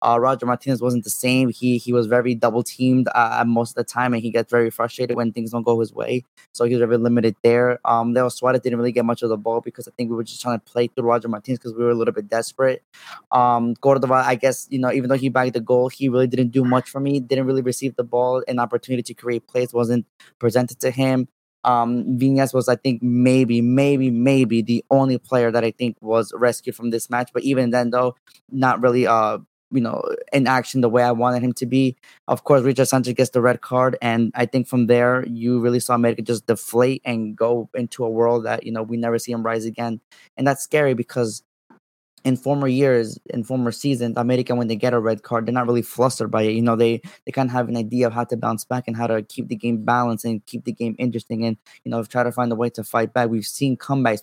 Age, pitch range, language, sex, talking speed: 20-39, 115-130 Hz, English, male, 255 wpm